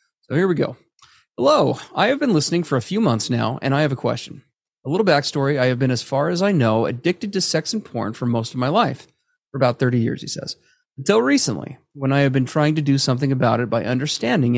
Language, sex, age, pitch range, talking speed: English, male, 30-49, 120-160 Hz, 245 wpm